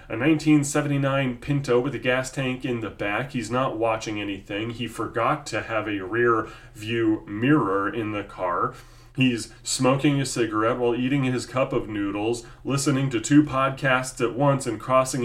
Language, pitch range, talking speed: English, 115-145 Hz, 165 wpm